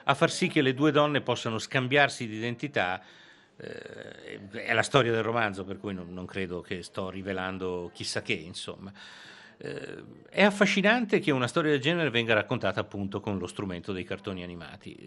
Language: Italian